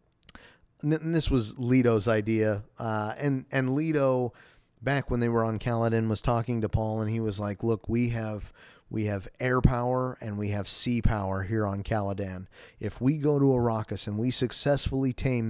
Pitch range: 110-125 Hz